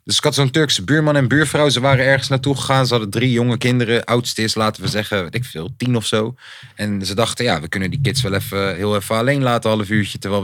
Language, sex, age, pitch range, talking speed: Dutch, male, 30-49, 105-145 Hz, 260 wpm